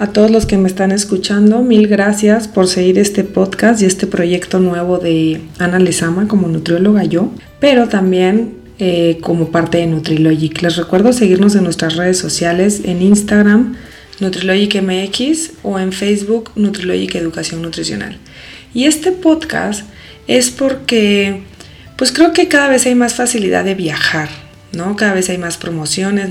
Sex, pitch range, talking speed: female, 175-220 Hz, 150 wpm